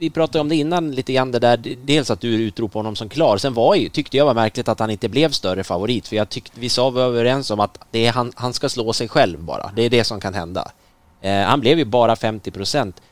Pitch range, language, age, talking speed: 105-135 Hz, Swedish, 30-49, 275 wpm